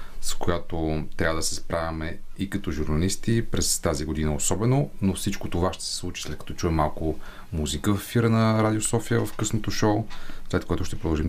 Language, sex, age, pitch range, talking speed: Bulgarian, male, 30-49, 85-105 Hz, 190 wpm